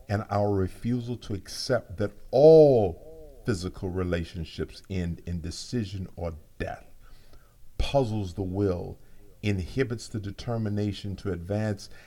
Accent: American